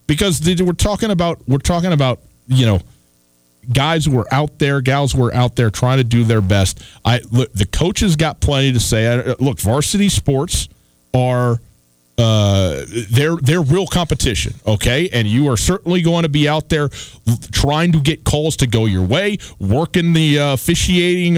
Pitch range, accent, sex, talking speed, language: 105-145 Hz, American, male, 175 wpm, English